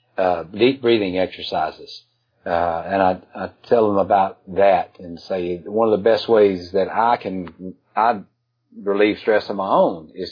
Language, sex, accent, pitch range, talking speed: English, male, American, 90-115 Hz, 170 wpm